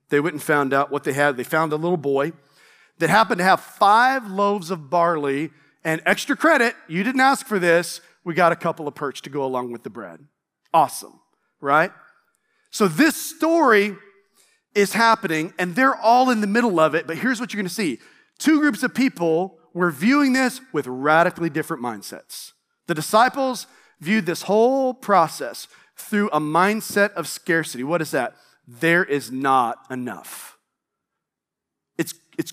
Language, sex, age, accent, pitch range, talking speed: English, male, 40-59, American, 160-225 Hz, 170 wpm